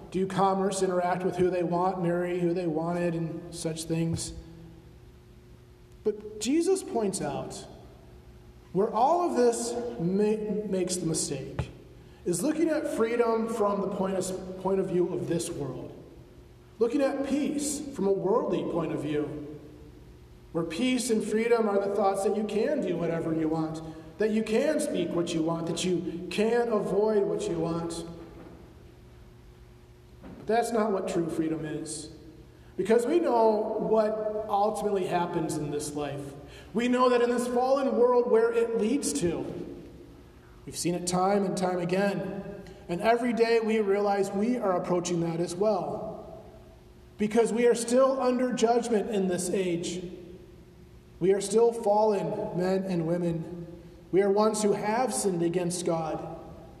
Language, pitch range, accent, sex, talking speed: English, 165-220 Hz, American, male, 150 wpm